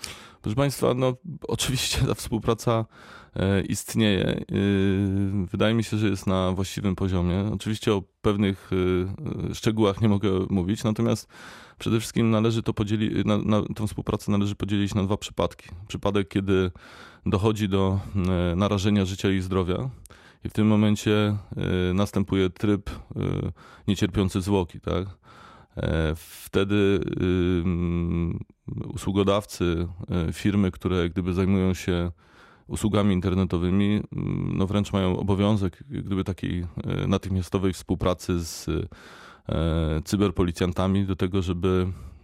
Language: Polish